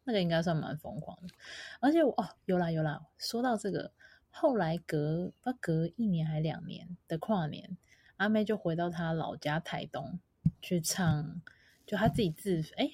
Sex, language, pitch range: female, Chinese, 160-195 Hz